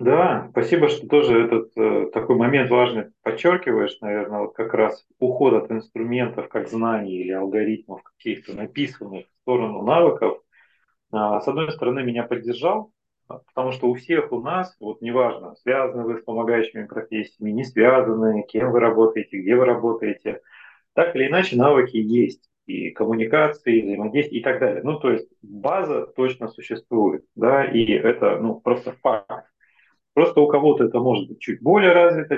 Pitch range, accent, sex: 110-145 Hz, native, male